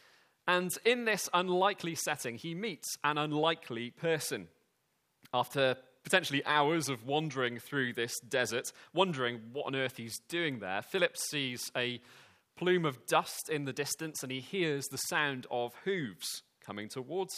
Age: 30-49